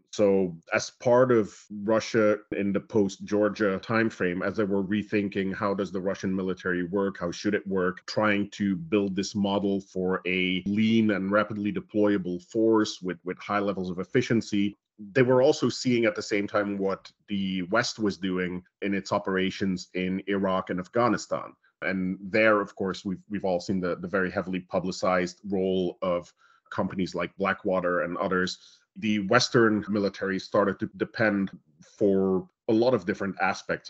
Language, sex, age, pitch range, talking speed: English, male, 30-49, 95-110 Hz, 165 wpm